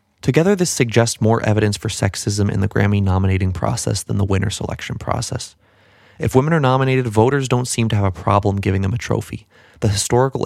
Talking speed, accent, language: 195 wpm, American, English